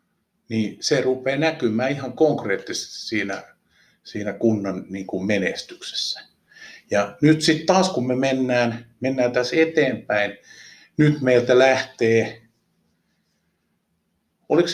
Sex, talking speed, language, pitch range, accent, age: male, 100 wpm, Finnish, 110-180 Hz, native, 50-69